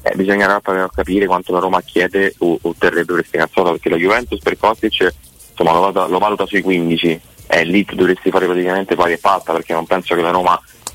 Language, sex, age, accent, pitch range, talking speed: Italian, male, 30-49, native, 85-100 Hz, 215 wpm